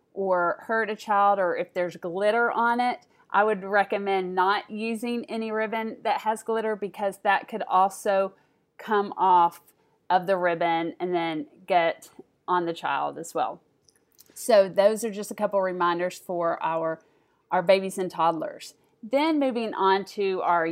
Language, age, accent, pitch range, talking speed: English, 40-59, American, 180-220 Hz, 160 wpm